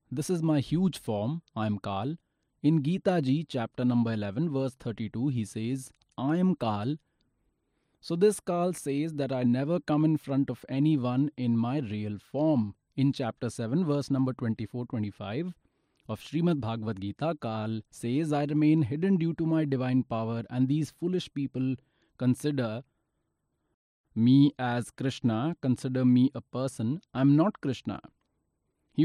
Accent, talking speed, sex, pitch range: native, 155 wpm, male, 115-155 Hz